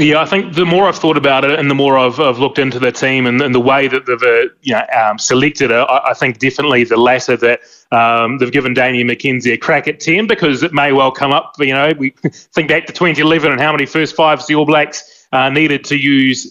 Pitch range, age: 130-155 Hz, 20-39